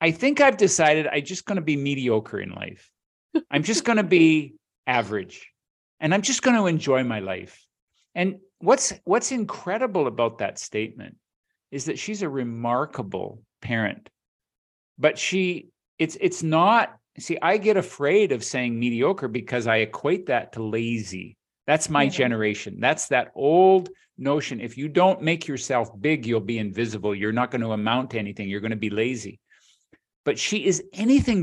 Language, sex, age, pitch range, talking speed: English, male, 50-69, 120-200 Hz, 170 wpm